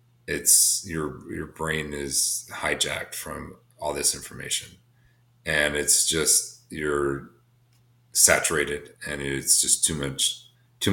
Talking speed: 115 wpm